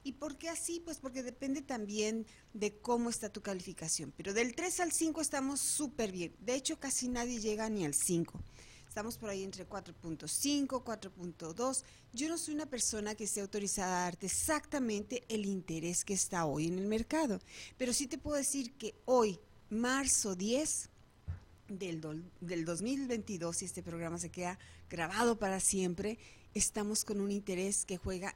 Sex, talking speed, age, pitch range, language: female, 170 wpm, 40-59, 180-265 Hz, Spanish